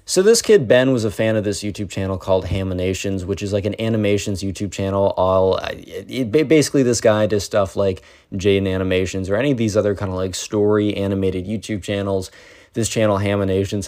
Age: 20-39